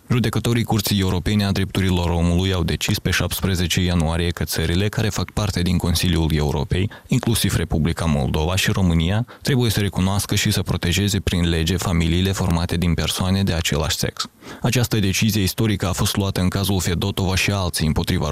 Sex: male